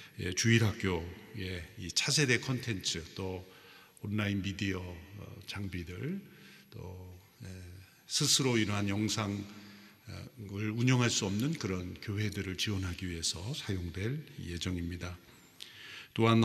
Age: 50-69